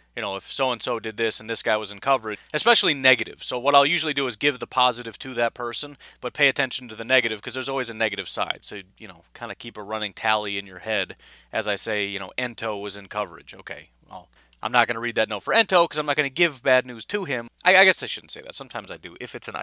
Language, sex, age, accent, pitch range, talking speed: English, male, 30-49, American, 100-140 Hz, 285 wpm